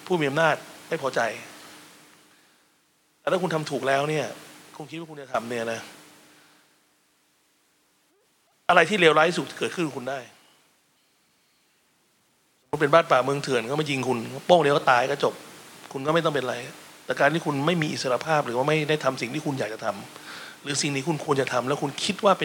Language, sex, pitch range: Thai, male, 135-160 Hz